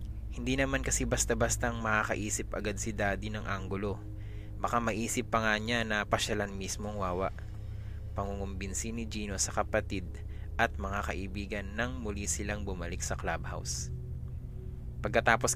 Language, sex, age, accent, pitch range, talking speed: English, male, 20-39, Filipino, 95-115 Hz, 135 wpm